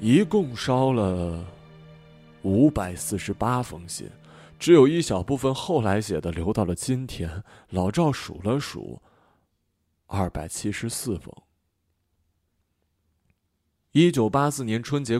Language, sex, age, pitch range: Chinese, male, 20-39, 85-125 Hz